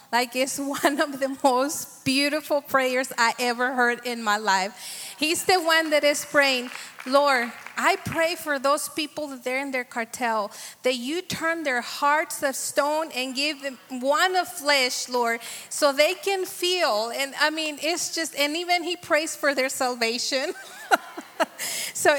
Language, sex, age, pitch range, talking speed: English, female, 30-49, 230-285 Hz, 170 wpm